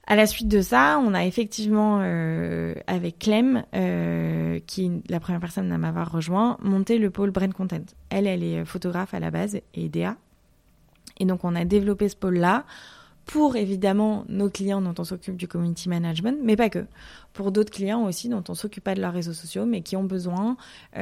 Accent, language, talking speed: French, French, 205 wpm